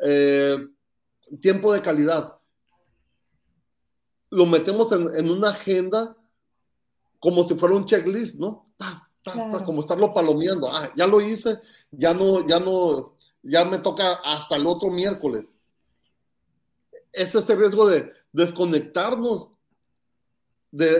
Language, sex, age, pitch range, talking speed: Spanish, male, 40-59, 165-210 Hz, 125 wpm